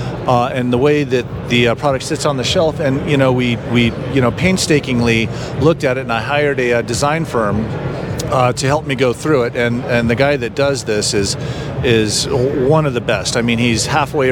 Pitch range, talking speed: 115-145 Hz, 225 wpm